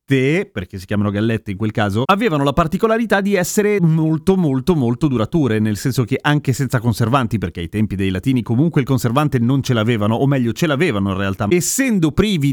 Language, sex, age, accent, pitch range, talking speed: Italian, male, 30-49, native, 115-175 Hz, 195 wpm